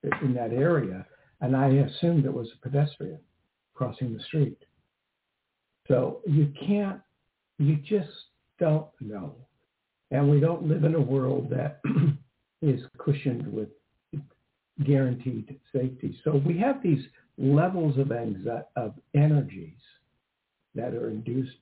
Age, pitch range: 60-79, 125-150 Hz